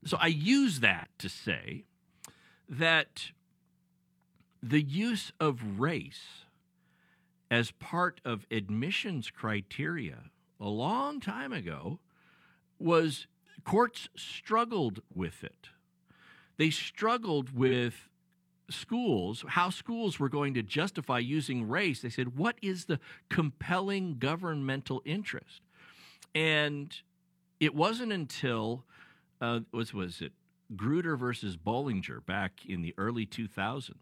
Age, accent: 50-69, American